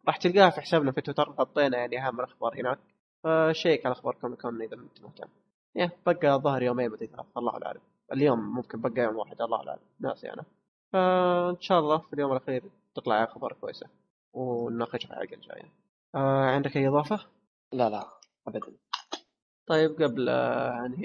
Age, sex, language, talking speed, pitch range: 20-39, male, Arabic, 165 wpm, 125-150 Hz